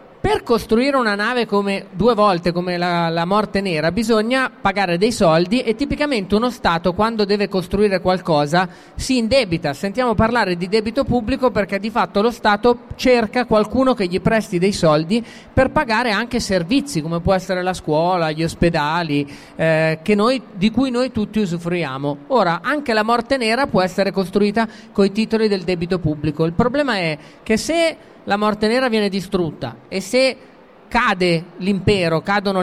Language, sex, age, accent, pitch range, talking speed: Italian, male, 30-49, native, 175-225 Hz, 165 wpm